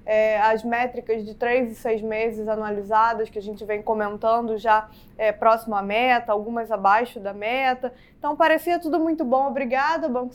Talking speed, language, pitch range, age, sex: 175 wpm, Portuguese, 220-260 Hz, 20-39, female